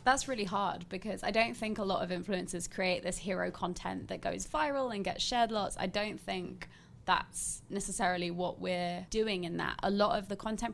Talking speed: 205 wpm